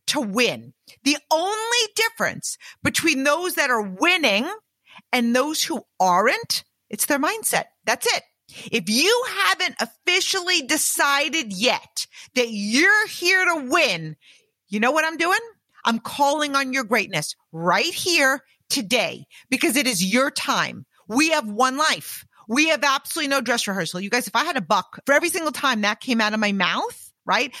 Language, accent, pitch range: English, American, 235-340 Hz